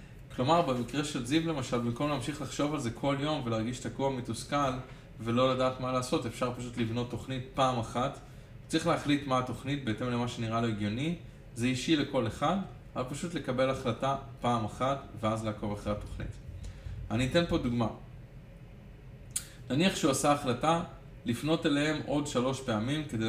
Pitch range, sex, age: 115-140 Hz, male, 20-39